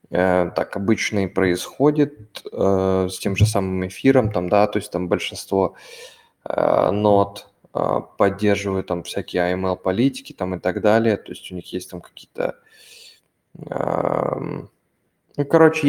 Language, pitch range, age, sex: Russian, 95-115 Hz, 20-39, male